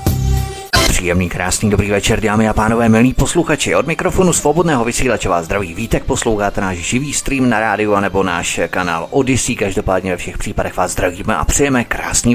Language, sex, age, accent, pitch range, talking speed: Czech, male, 30-49, native, 100-135 Hz, 170 wpm